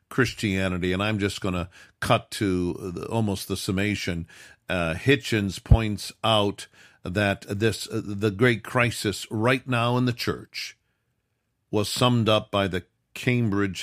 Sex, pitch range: male, 95-120 Hz